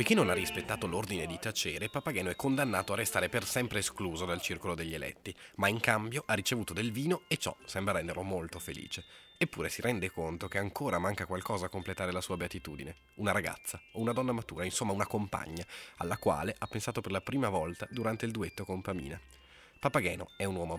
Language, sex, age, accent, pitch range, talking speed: Italian, male, 20-39, native, 90-110 Hz, 205 wpm